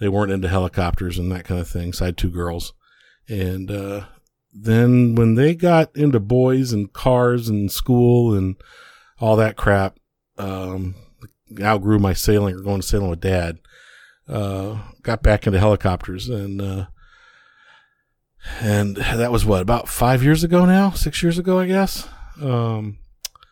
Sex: male